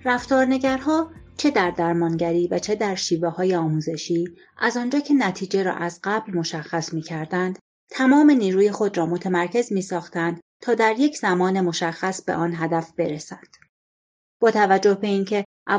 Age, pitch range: 30-49, 170-205 Hz